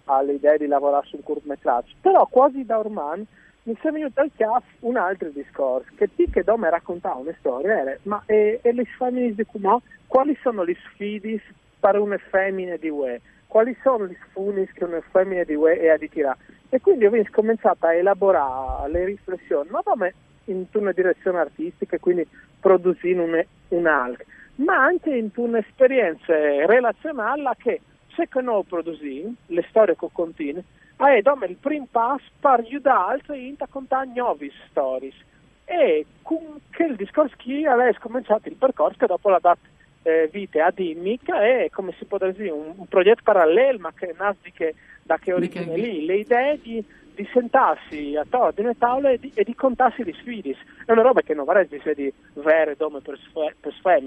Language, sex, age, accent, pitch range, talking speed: Italian, male, 50-69, native, 165-250 Hz, 170 wpm